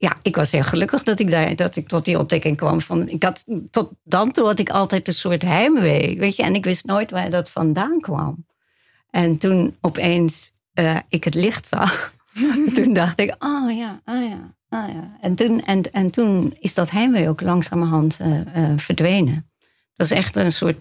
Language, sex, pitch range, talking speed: Dutch, female, 160-195 Hz, 205 wpm